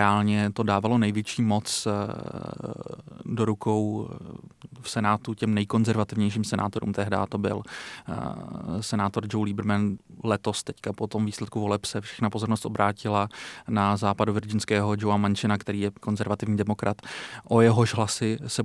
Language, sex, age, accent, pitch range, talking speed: Czech, male, 30-49, native, 105-115 Hz, 130 wpm